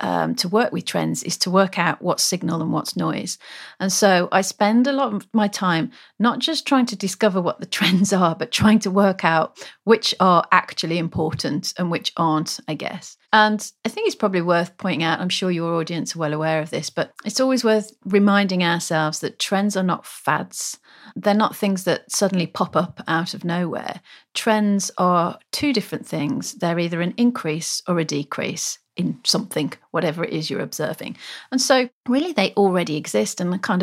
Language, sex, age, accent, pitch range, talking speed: English, female, 40-59, British, 170-215 Hz, 200 wpm